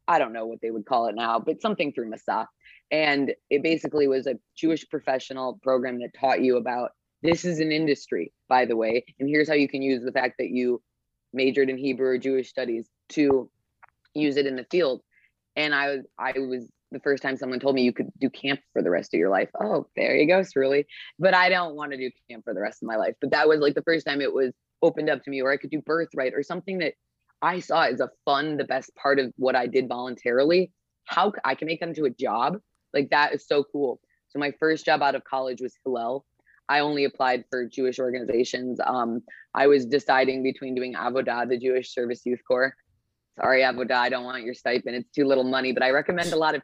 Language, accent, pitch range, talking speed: English, American, 125-145 Hz, 240 wpm